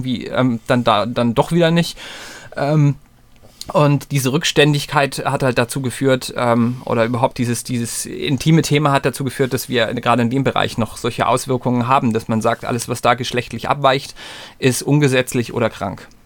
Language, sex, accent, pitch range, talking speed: German, male, German, 125-145 Hz, 175 wpm